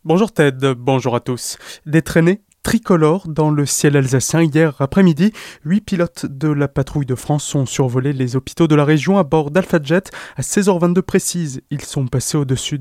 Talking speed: 185 wpm